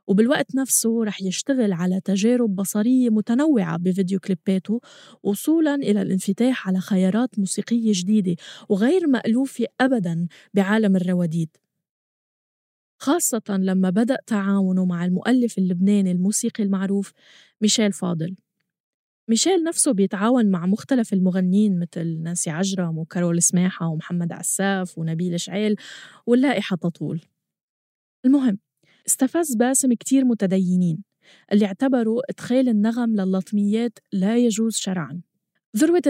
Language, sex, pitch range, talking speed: Arabic, female, 190-245 Hz, 105 wpm